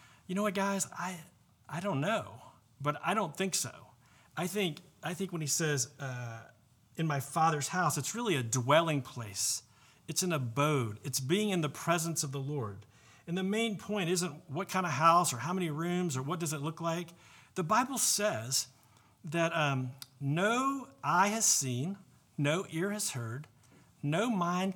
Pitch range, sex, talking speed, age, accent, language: 130-175 Hz, male, 180 wpm, 40-59, American, English